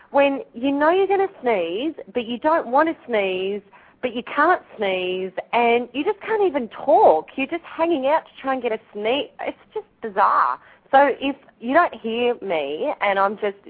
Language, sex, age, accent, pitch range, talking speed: English, female, 30-49, Australian, 195-280 Hz, 195 wpm